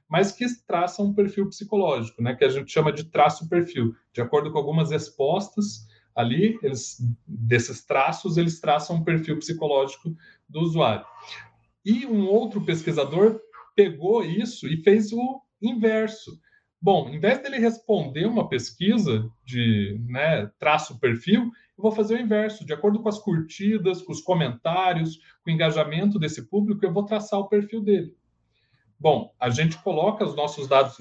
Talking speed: 155 wpm